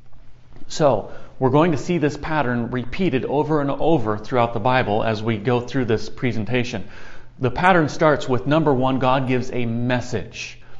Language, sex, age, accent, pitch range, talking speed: English, male, 30-49, American, 120-155 Hz, 165 wpm